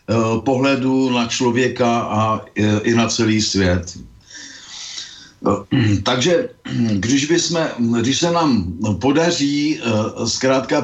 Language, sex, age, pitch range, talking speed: Slovak, male, 50-69, 100-125 Hz, 90 wpm